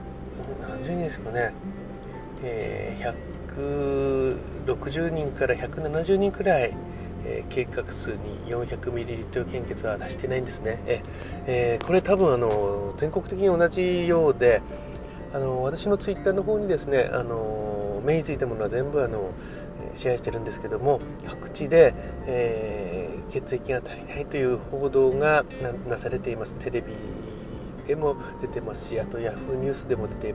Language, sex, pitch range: Japanese, male, 100-155 Hz